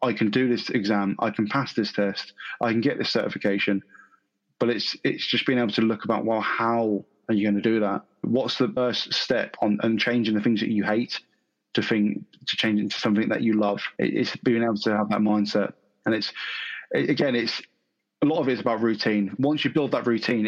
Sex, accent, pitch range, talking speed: male, British, 105-125 Hz, 225 wpm